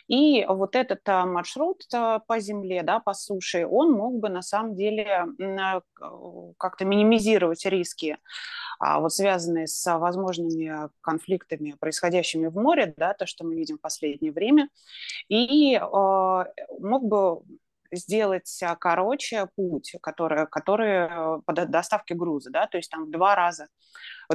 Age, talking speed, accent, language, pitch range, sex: 20-39, 125 wpm, native, Russian, 165-220 Hz, female